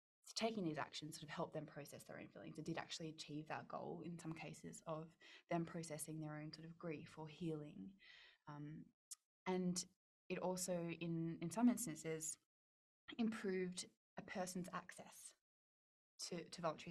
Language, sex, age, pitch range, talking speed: English, female, 10-29, 155-180 Hz, 160 wpm